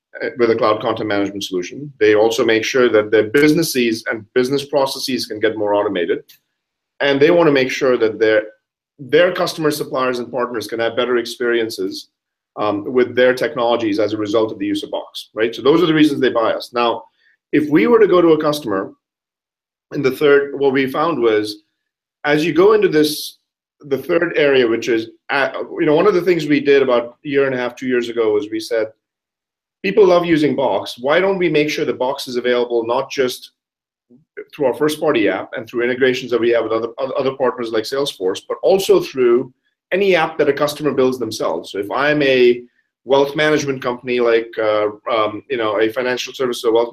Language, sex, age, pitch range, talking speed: English, male, 30-49, 120-170 Hz, 210 wpm